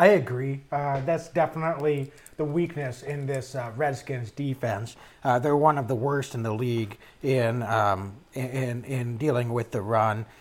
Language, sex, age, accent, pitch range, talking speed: English, male, 30-49, American, 125-155 Hz, 165 wpm